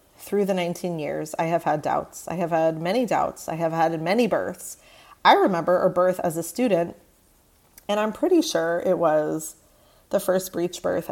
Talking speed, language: 190 wpm, English